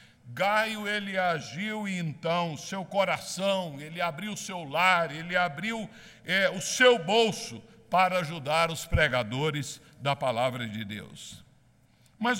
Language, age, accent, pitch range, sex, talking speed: Portuguese, 60-79, Brazilian, 145-195 Hz, male, 120 wpm